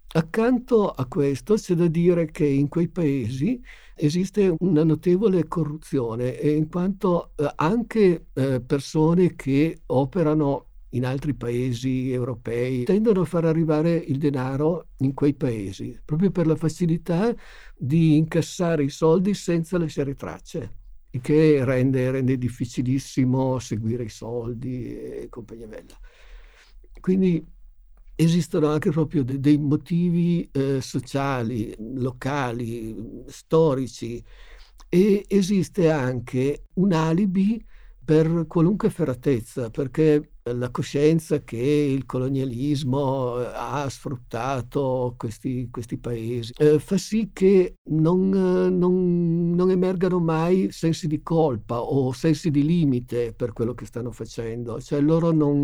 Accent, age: native, 60-79